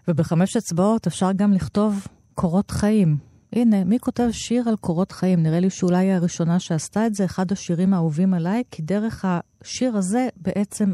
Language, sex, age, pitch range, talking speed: Hebrew, female, 40-59, 150-195 Hz, 170 wpm